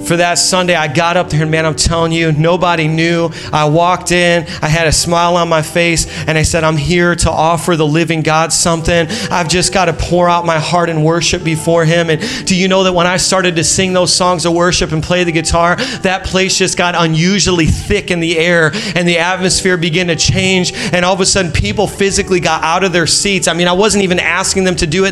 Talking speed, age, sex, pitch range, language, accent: 245 wpm, 30-49, male, 175-225 Hz, English, American